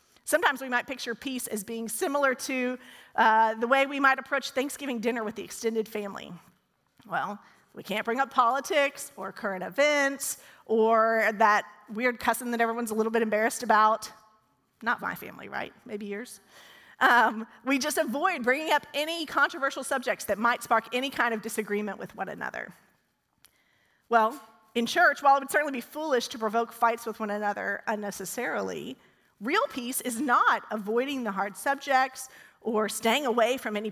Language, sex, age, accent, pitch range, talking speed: English, female, 40-59, American, 215-275 Hz, 170 wpm